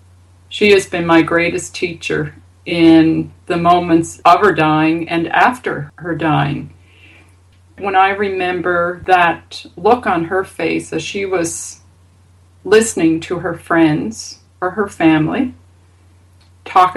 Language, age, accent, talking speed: English, 40-59, American, 125 wpm